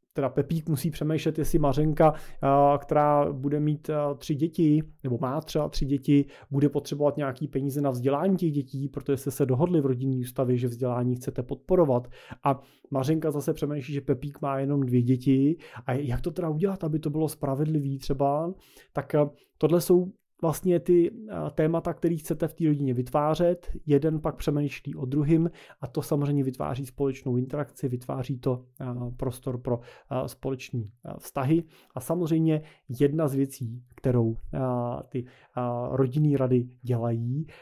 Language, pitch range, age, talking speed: Czech, 130-155 Hz, 30-49, 150 wpm